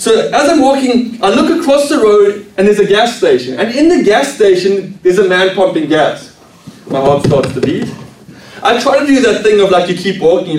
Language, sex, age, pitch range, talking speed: English, male, 30-49, 175-235 Hz, 225 wpm